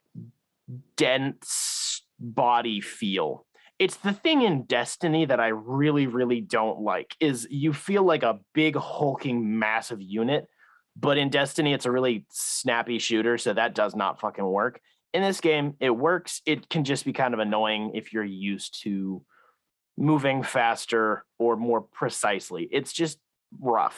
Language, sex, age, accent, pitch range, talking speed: English, male, 30-49, American, 115-155 Hz, 155 wpm